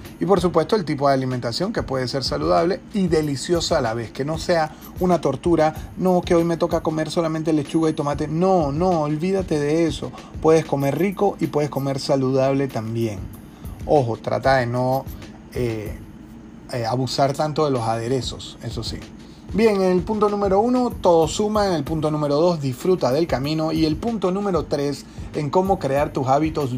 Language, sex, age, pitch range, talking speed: Spanish, male, 30-49, 125-165 Hz, 185 wpm